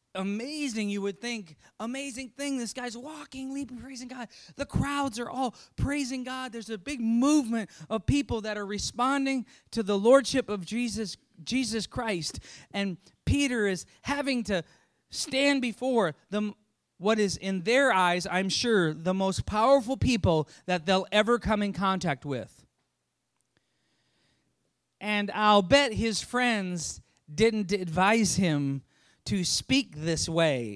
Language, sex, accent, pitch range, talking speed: English, male, American, 170-250 Hz, 140 wpm